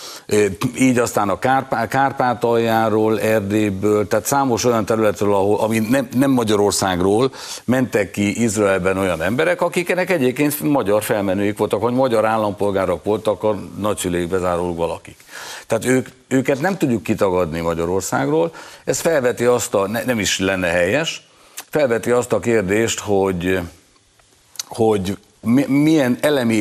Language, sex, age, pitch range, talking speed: Hungarian, male, 60-79, 95-125 Hz, 125 wpm